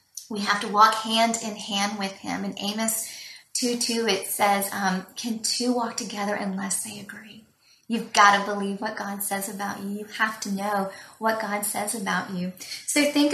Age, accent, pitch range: 30-49, American, 200-225 Hz